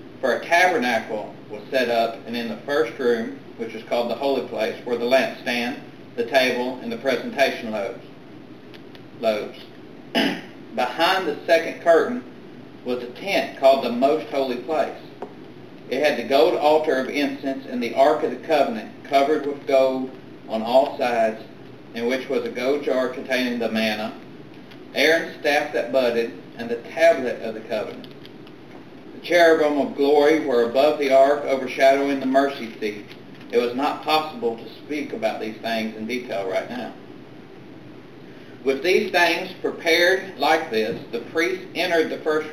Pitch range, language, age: 120-155 Hz, English, 40-59